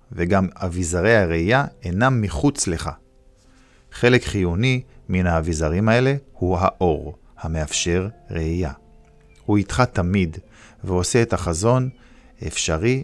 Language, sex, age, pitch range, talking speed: Hebrew, male, 50-69, 85-115 Hz, 100 wpm